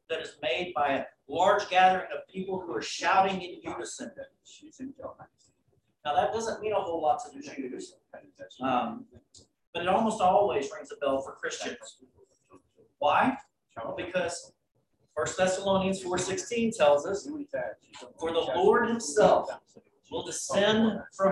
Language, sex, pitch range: Chinese, male, 185-265 Hz